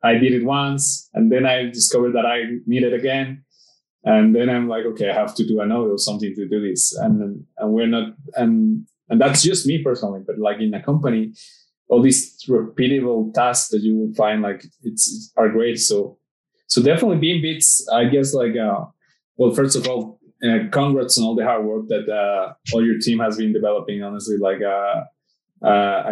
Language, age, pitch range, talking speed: English, 20-39, 110-155 Hz, 200 wpm